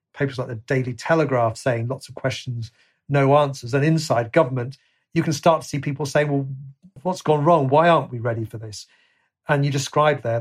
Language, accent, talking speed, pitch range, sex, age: English, British, 200 wpm, 125-145 Hz, male, 40-59